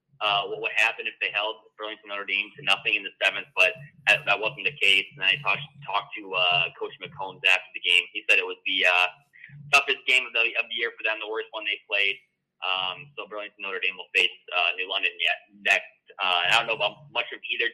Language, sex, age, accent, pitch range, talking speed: English, male, 20-39, American, 100-150 Hz, 240 wpm